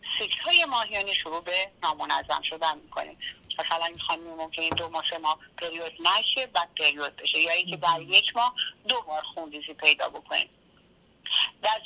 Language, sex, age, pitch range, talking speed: Persian, female, 30-49, 160-255 Hz, 155 wpm